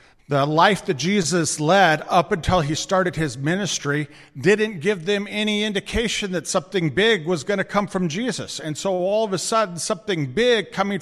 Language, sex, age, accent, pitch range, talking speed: English, male, 50-69, American, 155-205 Hz, 185 wpm